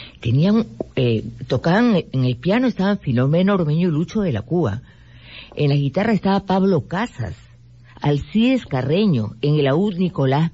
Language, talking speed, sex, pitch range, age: Spanish, 150 wpm, female, 130-190 Hz, 50-69